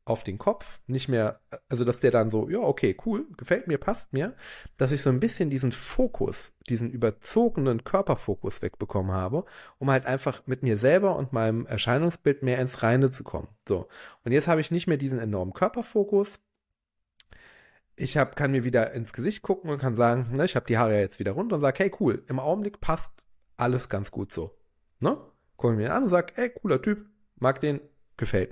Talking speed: 195 wpm